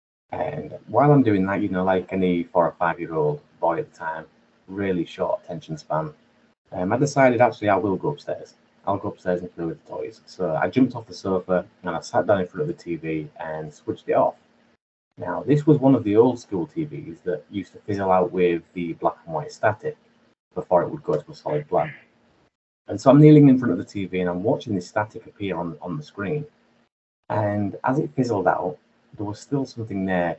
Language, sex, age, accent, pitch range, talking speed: English, male, 30-49, British, 90-120 Hz, 220 wpm